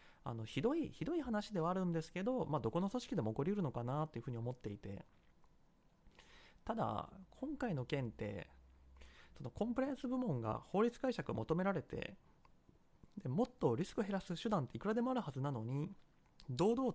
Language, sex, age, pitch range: Japanese, male, 30-49, 125-210 Hz